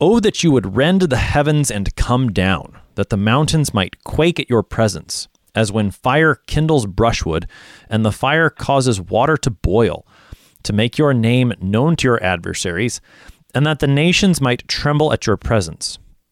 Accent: American